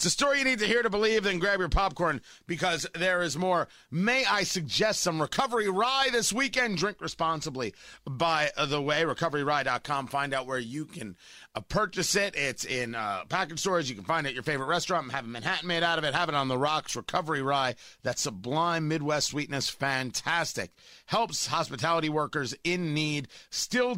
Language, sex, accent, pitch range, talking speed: English, male, American, 140-200 Hz, 190 wpm